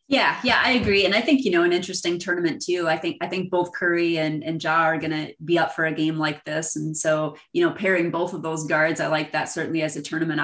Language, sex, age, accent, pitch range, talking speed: English, female, 30-49, American, 160-185 Hz, 275 wpm